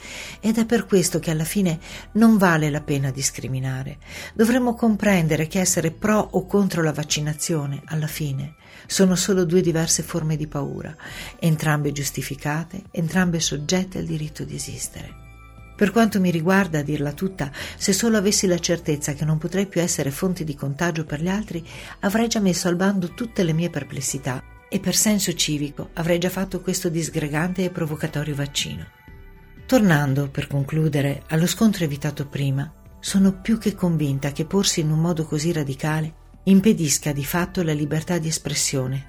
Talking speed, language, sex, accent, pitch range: 165 wpm, Italian, female, native, 145-185 Hz